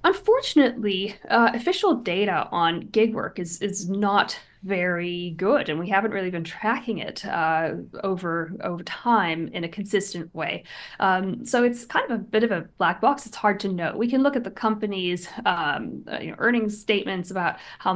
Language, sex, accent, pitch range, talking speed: English, female, American, 185-225 Hz, 185 wpm